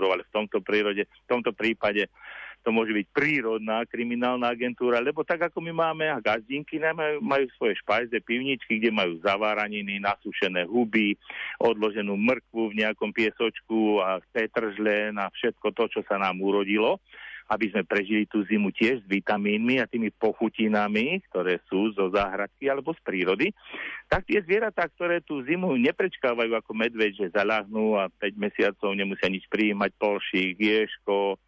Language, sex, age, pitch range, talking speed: Slovak, male, 50-69, 100-125 Hz, 160 wpm